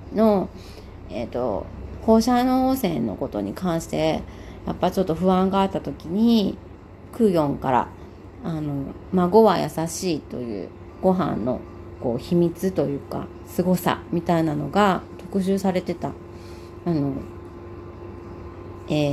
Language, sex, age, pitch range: Japanese, female, 40-59, 140-205 Hz